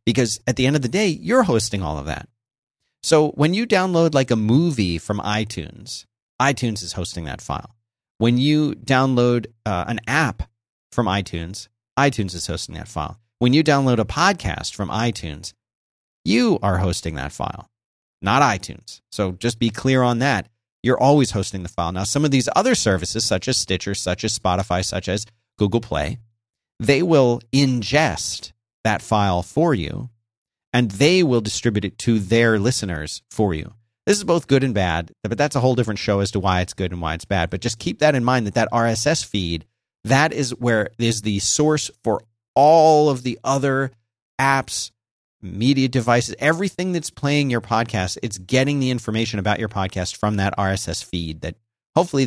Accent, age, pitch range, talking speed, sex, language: American, 30-49, 100-130 Hz, 185 wpm, male, English